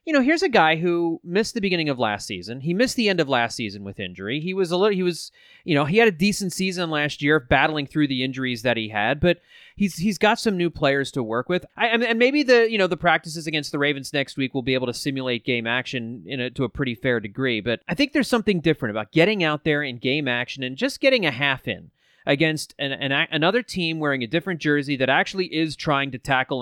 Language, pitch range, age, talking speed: English, 130-190 Hz, 30-49, 260 wpm